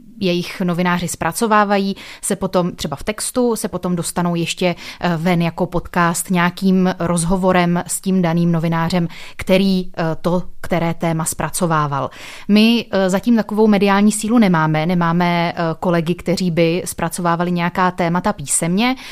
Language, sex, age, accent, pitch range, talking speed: Czech, female, 30-49, native, 165-195 Hz, 125 wpm